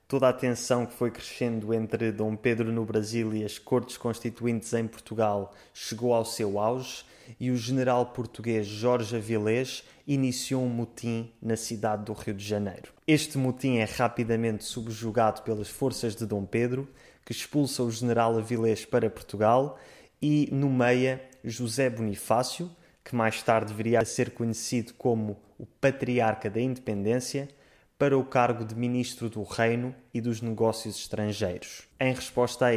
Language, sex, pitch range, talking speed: Portuguese, male, 110-125 Hz, 155 wpm